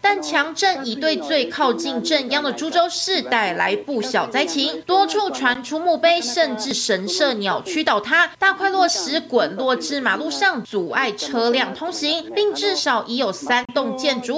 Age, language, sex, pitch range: 20-39, Chinese, female, 230-340 Hz